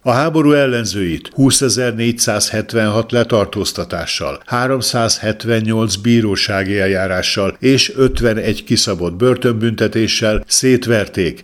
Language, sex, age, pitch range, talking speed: Hungarian, male, 60-79, 100-125 Hz, 70 wpm